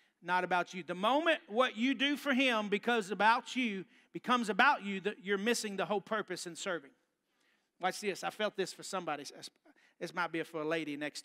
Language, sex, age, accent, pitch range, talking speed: English, male, 40-59, American, 205-275 Hz, 205 wpm